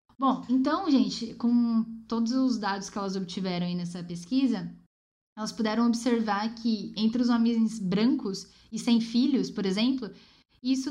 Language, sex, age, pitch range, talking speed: Portuguese, female, 10-29, 200-245 Hz, 150 wpm